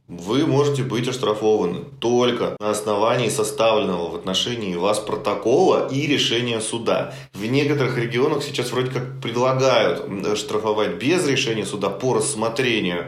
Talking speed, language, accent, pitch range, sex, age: 130 wpm, Russian, native, 105-135 Hz, male, 20-39